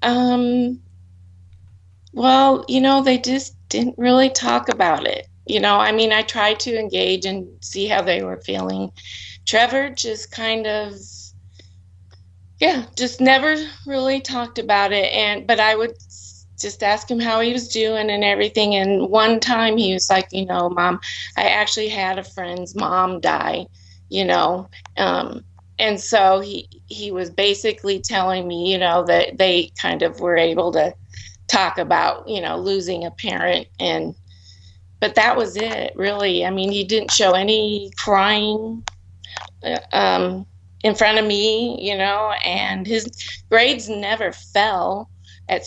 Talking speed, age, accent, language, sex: 155 wpm, 30-49, American, English, female